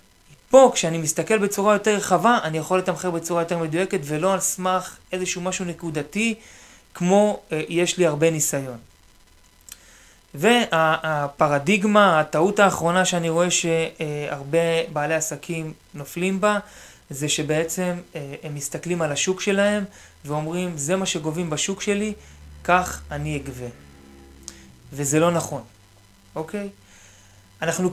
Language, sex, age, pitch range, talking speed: Hebrew, male, 20-39, 150-190 Hz, 120 wpm